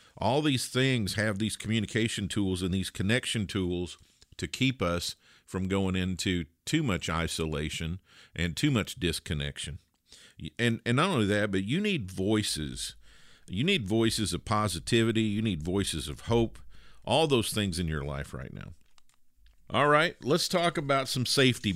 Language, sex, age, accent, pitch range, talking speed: English, male, 50-69, American, 85-120 Hz, 160 wpm